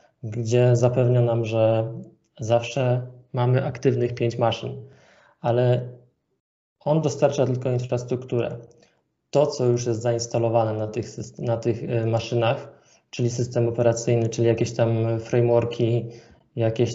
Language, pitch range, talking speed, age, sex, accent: Polish, 115-130 Hz, 115 wpm, 20-39, male, native